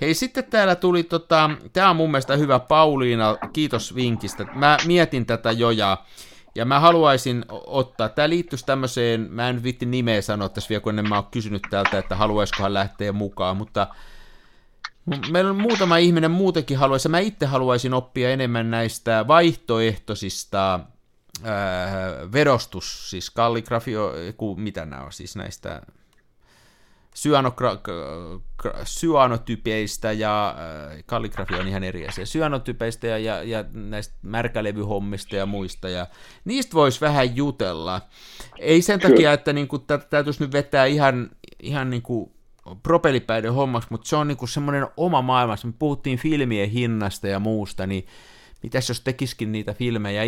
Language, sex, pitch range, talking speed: Finnish, male, 105-145 Hz, 140 wpm